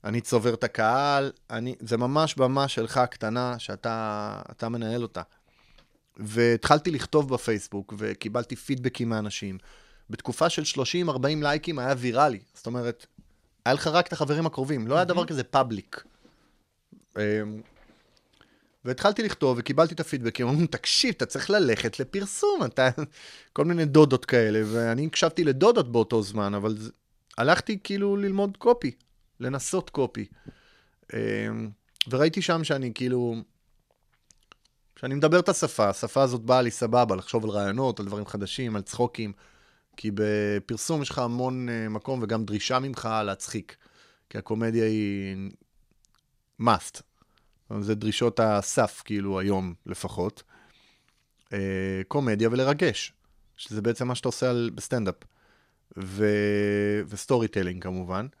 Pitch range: 105-140 Hz